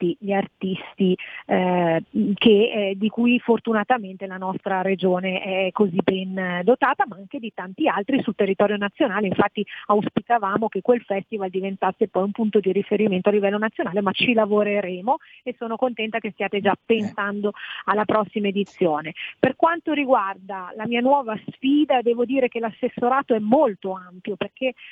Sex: female